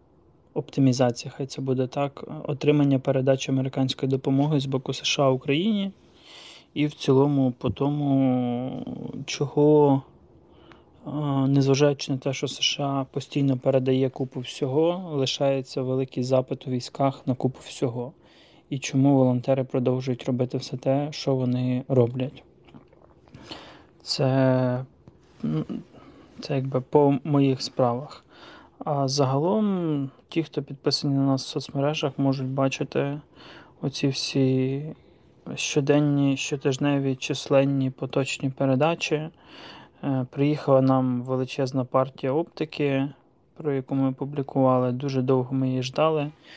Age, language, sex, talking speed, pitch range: 20-39, Ukrainian, male, 110 wpm, 130-145 Hz